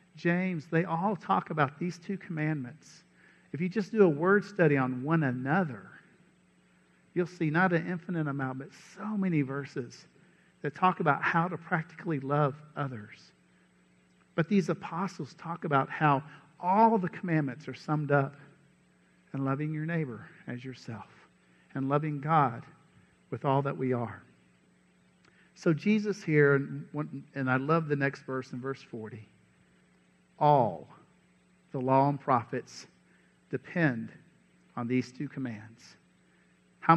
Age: 50-69